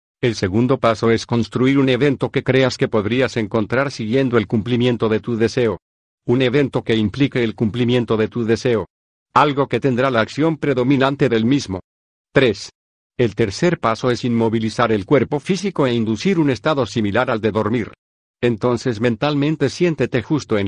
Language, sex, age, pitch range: Spanish, male, 50-69, 115-135 Hz